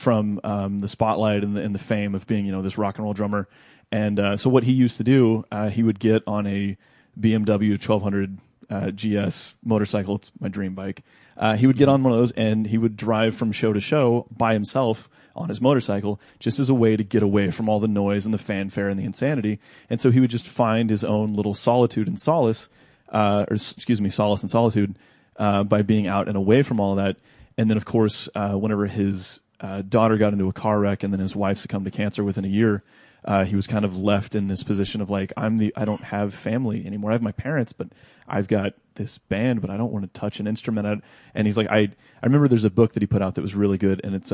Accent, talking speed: American, 250 wpm